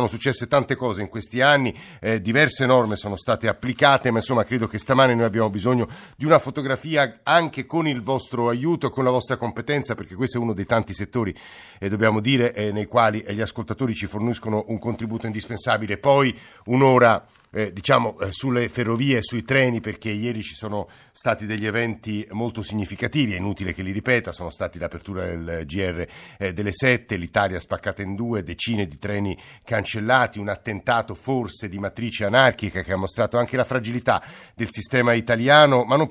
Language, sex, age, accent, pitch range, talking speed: Italian, male, 50-69, native, 105-130 Hz, 180 wpm